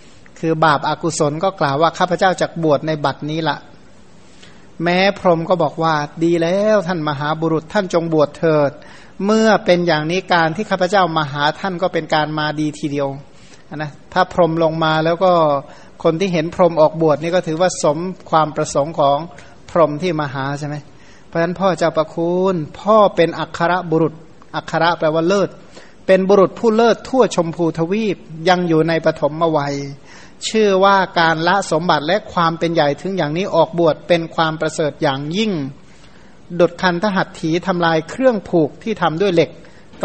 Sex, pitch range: male, 155-185 Hz